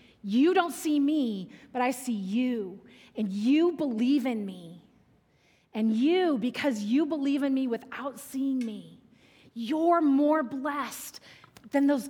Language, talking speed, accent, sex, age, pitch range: English, 140 wpm, American, female, 30-49, 245-335 Hz